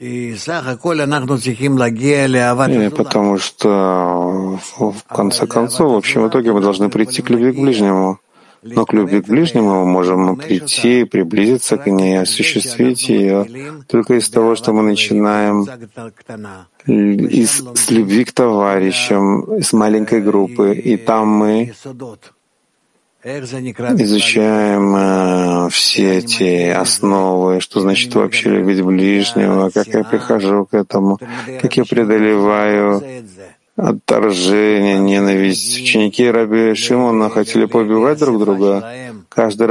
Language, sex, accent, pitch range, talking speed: Russian, male, native, 100-120 Hz, 110 wpm